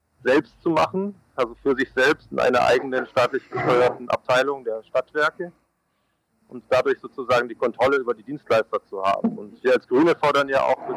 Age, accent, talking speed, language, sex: 40-59, German, 180 wpm, German, male